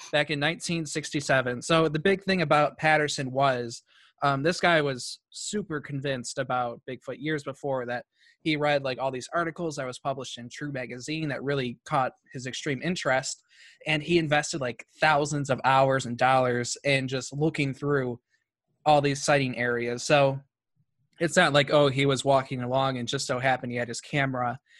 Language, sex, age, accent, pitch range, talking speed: English, male, 20-39, American, 130-150 Hz, 175 wpm